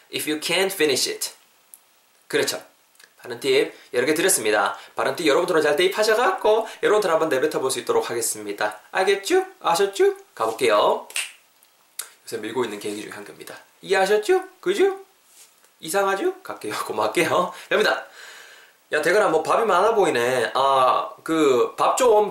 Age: 20-39